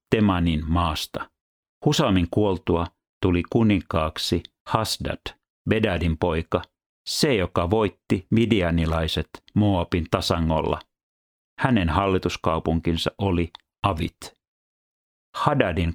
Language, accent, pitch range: Finnish, native, 85-100 Hz